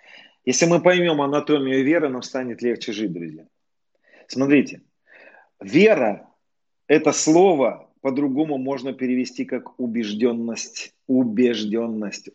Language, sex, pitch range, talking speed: Russian, male, 110-145 Hz, 95 wpm